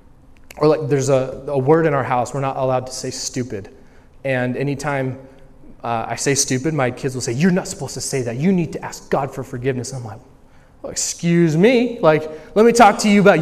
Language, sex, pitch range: English, male, 130-180 Hz